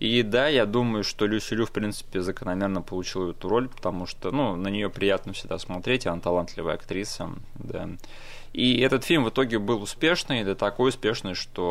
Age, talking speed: 20-39, 185 wpm